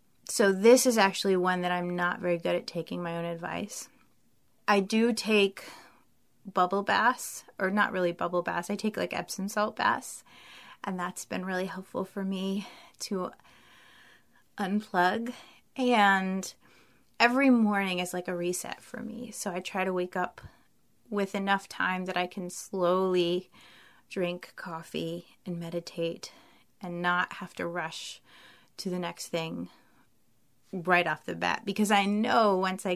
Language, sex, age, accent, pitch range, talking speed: English, female, 20-39, American, 180-215 Hz, 155 wpm